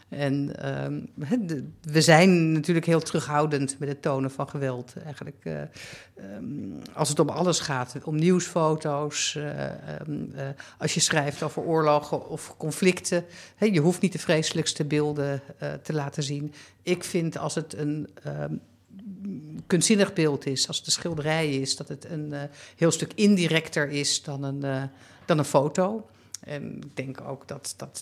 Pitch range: 140-165 Hz